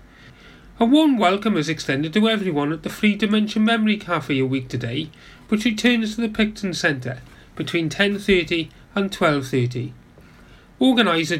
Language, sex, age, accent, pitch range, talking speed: English, male, 30-49, British, 145-200 Hz, 140 wpm